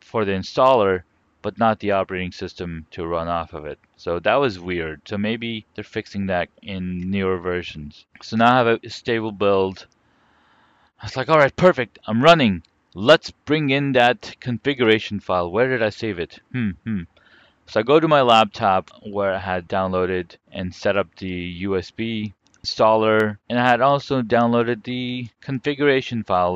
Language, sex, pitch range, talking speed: English, male, 95-125 Hz, 175 wpm